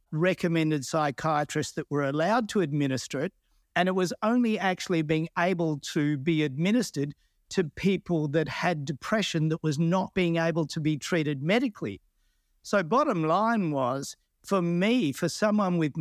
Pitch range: 140-170 Hz